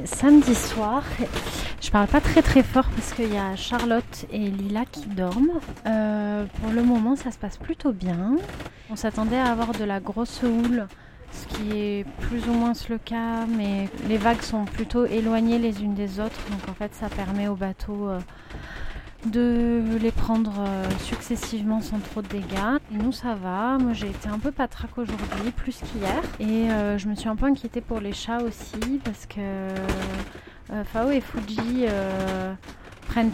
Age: 30-49